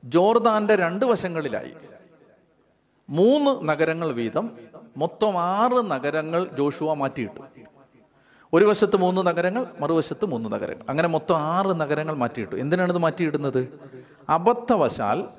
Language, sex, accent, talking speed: Malayalam, male, native, 105 wpm